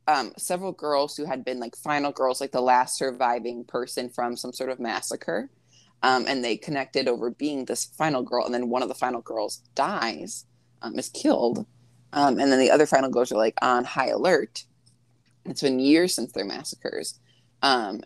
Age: 20-39